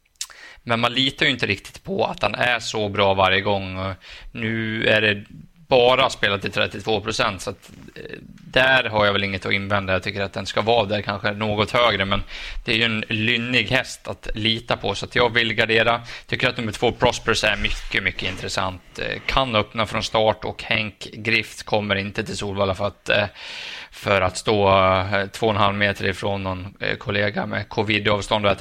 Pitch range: 100-115 Hz